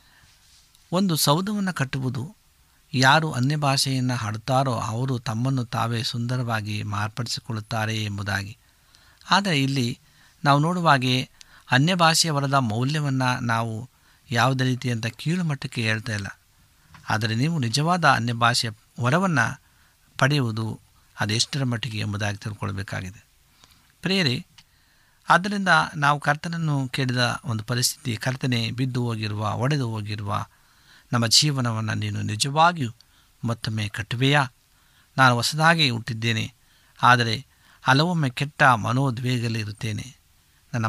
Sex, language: male, Kannada